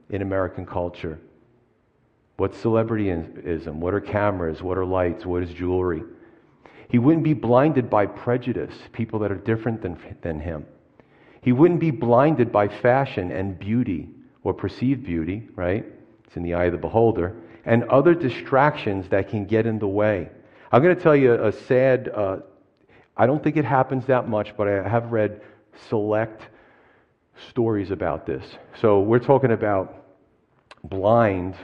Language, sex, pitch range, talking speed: English, male, 95-115 Hz, 155 wpm